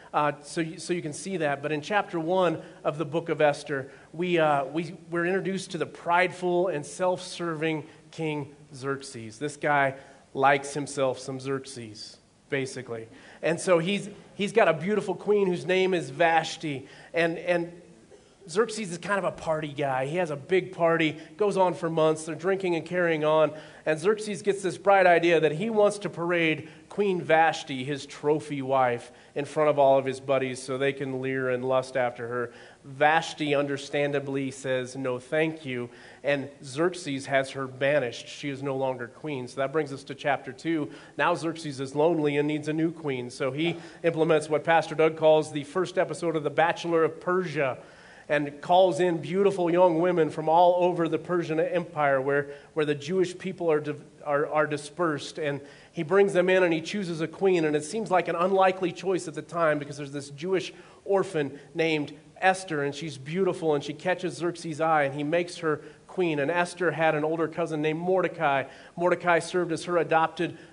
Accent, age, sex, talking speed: American, 30-49, male, 190 wpm